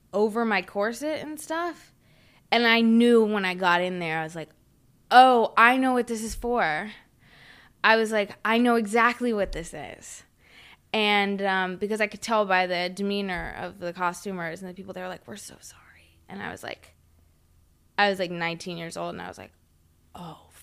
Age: 20-39